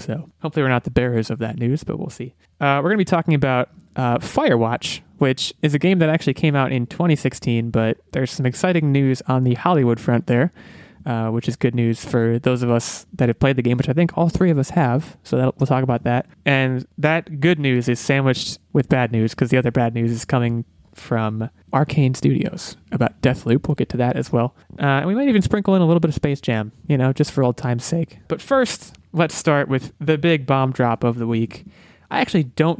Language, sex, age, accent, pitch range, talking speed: English, male, 20-39, American, 120-155 Hz, 240 wpm